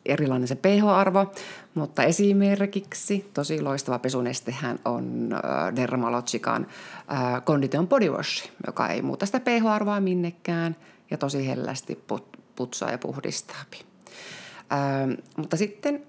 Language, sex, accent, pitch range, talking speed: Finnish, female, native, 135-200 Hz, 105 wpm